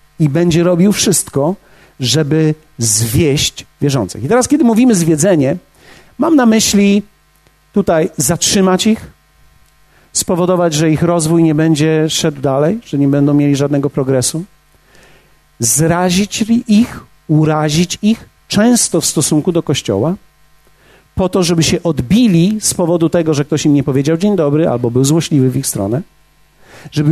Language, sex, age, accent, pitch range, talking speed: Polish, male, 50-69, native, 145-195 Hz, 140 wpm